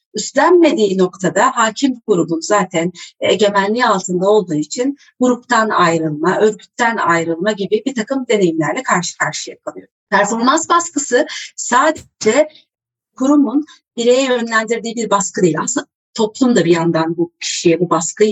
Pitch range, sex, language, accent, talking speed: 185-270 Hz, female, Turkish, native, 125 wpm